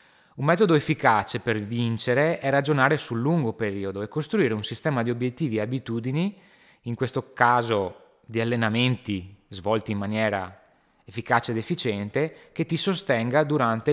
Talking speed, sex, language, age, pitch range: 140 wpm, male, Italian, 20-39, 105-145 Hz